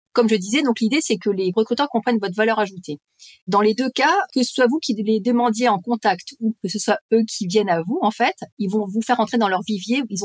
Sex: female